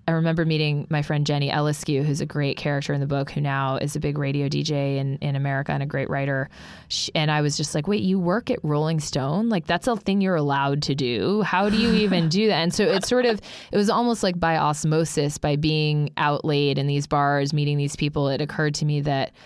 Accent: American